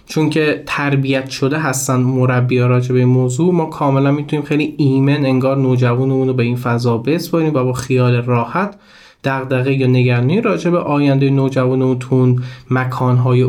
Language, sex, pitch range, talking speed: Persian, male, 130-175 Hz, 150 wpm